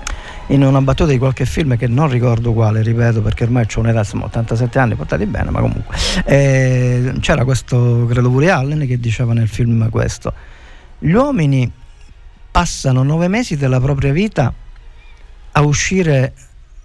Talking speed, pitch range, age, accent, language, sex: 155 wpm, 110-140 Hz, 50-69, native, Italian, male